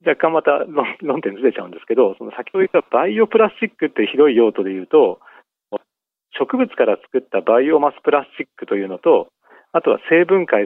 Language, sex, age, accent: Japanese, male, 40-59, native